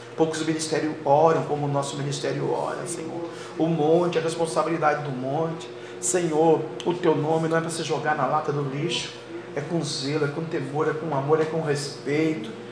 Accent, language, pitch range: Brazilian, Portuguese, 145-170 Hz